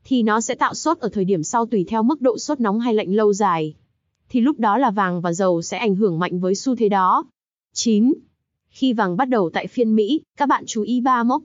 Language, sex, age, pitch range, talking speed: Vietnamese, female, 20-39, 200-250 Hz, 250 wpm